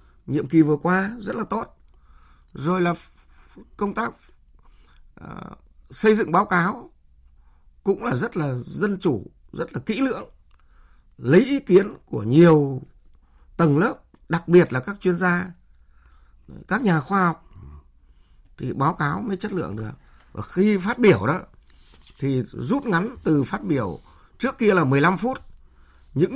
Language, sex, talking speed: Vietnamese, male, 155 wpm